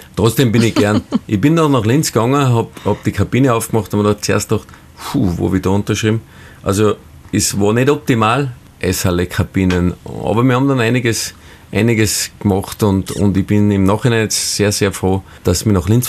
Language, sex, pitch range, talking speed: German, male, 90-105 Hz, 210 wpm